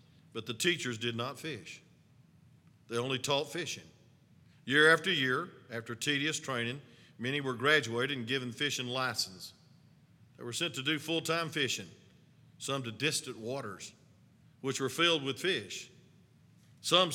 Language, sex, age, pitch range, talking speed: English, male, 50-69, 120-155 Hz, 140 wpm